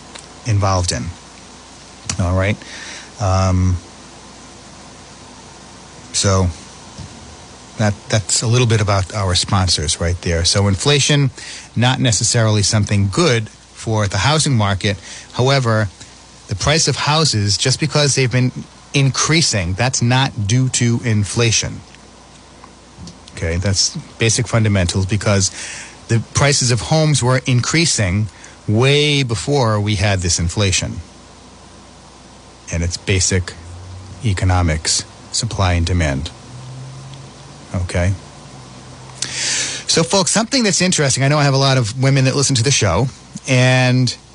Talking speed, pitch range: 115 wpm, 95-135 Hz